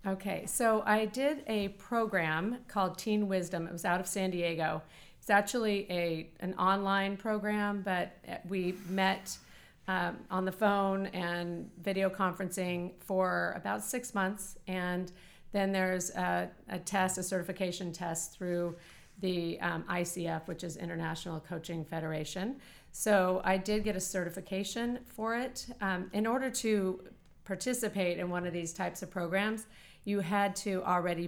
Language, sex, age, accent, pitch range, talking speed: English, female, 40-59, American, 175-205 Hz, 150 wpm